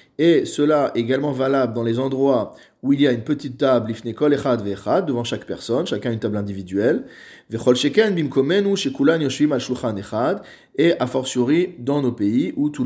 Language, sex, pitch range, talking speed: French, male, 115-145 Hz, 185 wpm